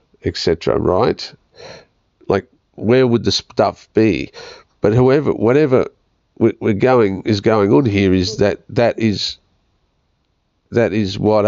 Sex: male